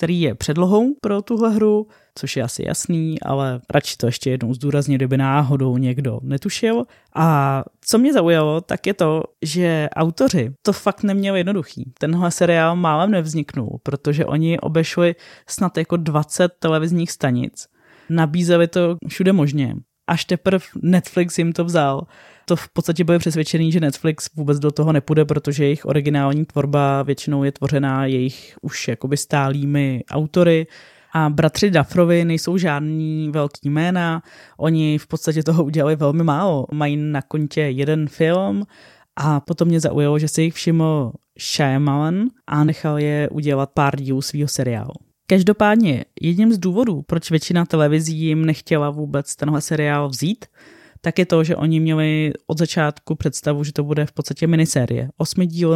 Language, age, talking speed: Czech, 20-39, 155 wpm